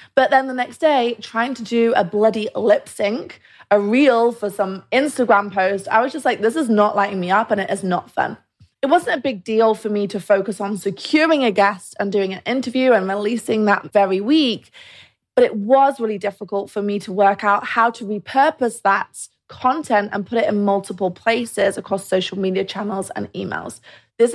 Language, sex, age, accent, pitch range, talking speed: English, female, 20-39, British, 200-245 Hz, 205 wpm